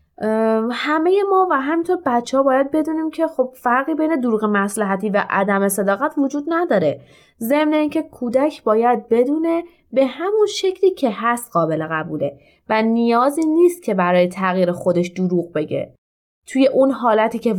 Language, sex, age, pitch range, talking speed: Persian, female, 20-39, 200-315 Hz, 150 wpm